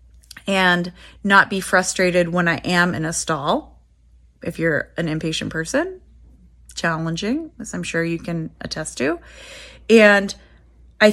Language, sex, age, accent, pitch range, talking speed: English, female, 30-49, American, 165-195 Hz, 135 wpm